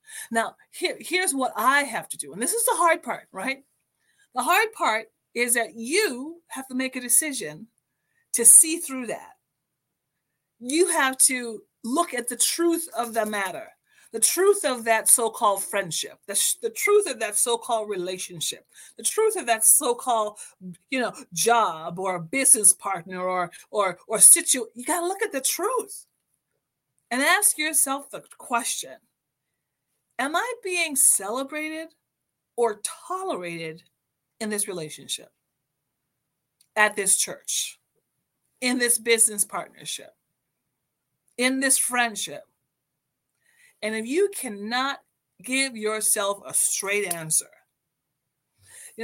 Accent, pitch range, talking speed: American, 205-315 Hz, 135 wpm